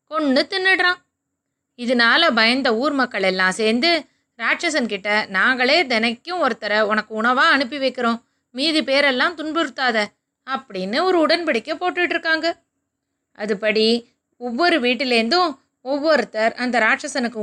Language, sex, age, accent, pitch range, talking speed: Tamil, female, 20-39, native, 230-315 Hz, 105 wpm